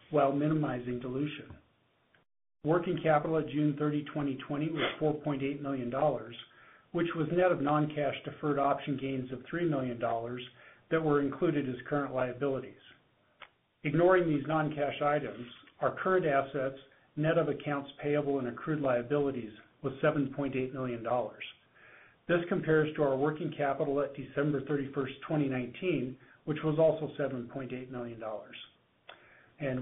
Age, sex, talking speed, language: 50-69, male, 125 wpm, English